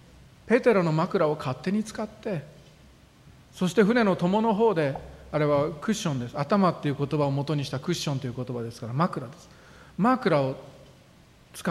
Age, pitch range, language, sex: 40-59, 135-205 Hz, Japanese, male